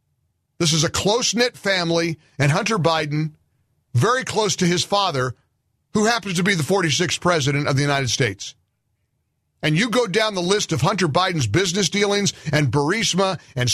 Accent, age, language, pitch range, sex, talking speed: American, 50-69, English, 150-215 Hz, male, 165 wpm